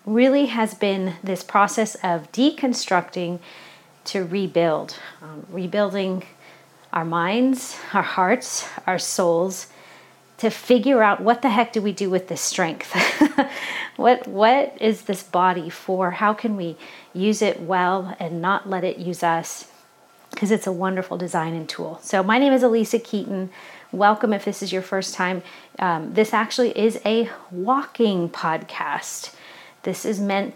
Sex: female